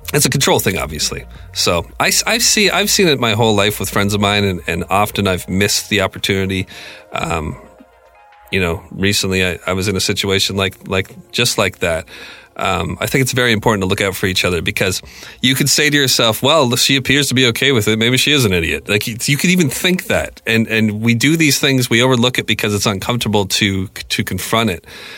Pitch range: 95-125 Hz